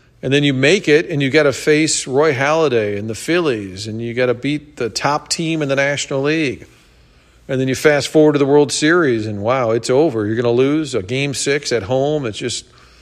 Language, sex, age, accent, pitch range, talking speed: English, male, 50-69, American, 120-150 Hz, 220 wpm